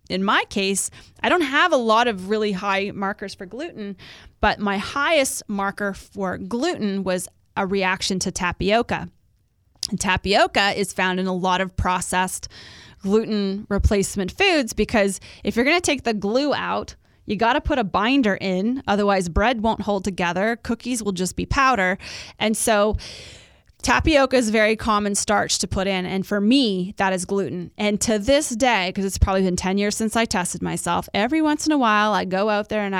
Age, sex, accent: 20-39, female, American